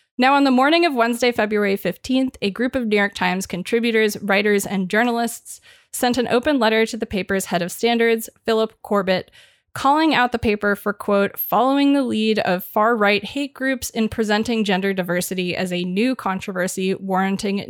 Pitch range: 190-235 Hz